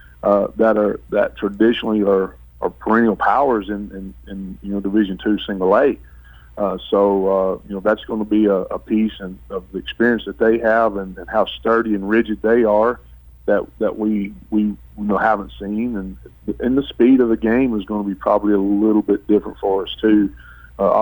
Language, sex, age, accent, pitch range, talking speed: English, male, 40-59, American, 95-110 Hz, 210 wpm